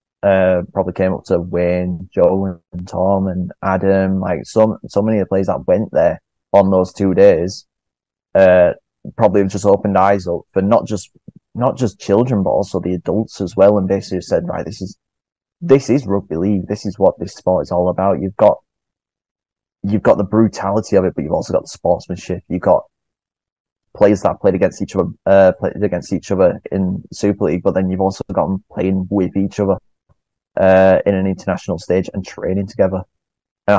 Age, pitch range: 20-39, 95-105 Hz